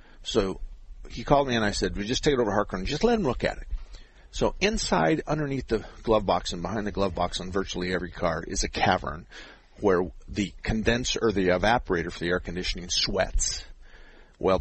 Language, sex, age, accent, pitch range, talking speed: English, male, 50-69, American, 85-105 Hz, 210 wpm